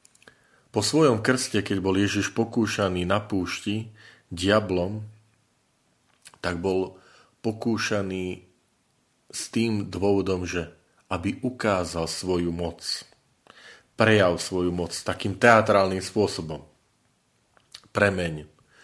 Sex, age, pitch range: male, 40-59, 85-105 Hz